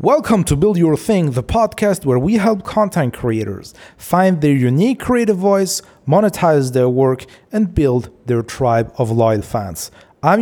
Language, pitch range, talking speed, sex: English, 125-190 Hz, 160 wpm, male